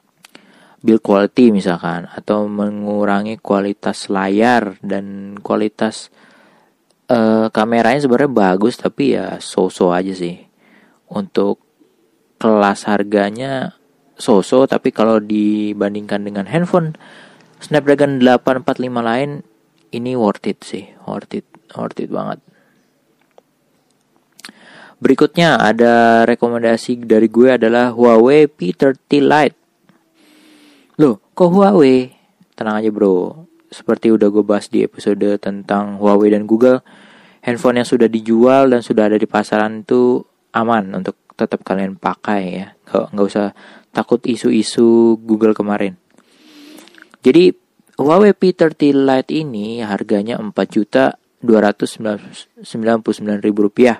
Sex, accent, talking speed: male, native, 105 wpm